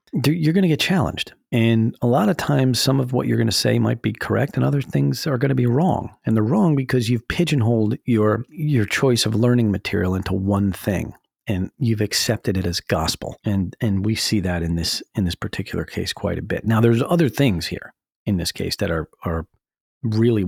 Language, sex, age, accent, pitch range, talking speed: English, male, 40-59, American, 90-120 Hz, 220 wpm